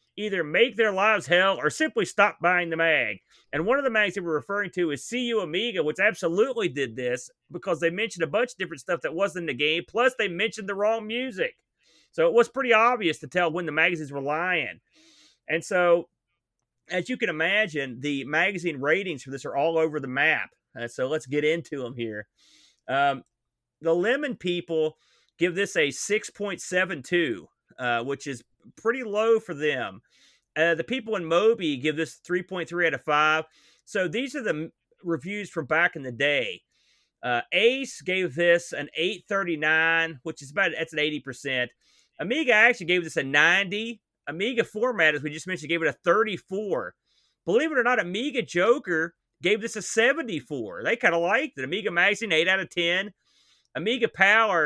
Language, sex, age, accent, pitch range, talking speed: English, male, 30-49, American, 155-220 Hz, 185 wpm